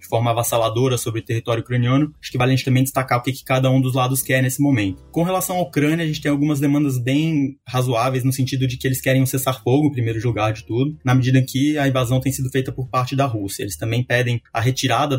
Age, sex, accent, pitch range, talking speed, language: 20-39, male, Brazilian, 115-140 Hz, 255 wpm, Portuguese